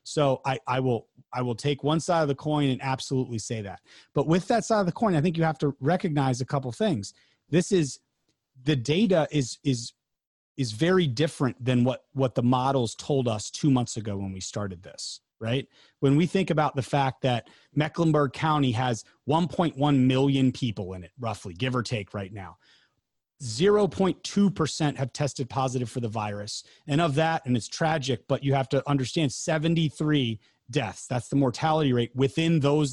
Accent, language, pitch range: American, English, 125-155 Hz